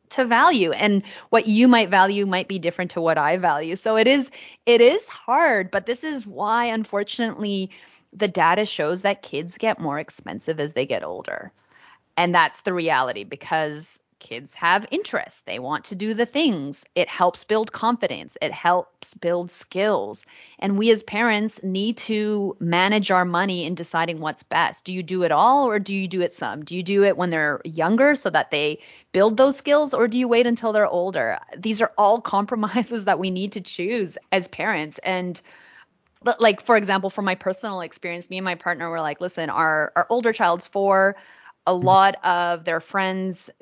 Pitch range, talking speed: 170-230 Hz, 190 wpm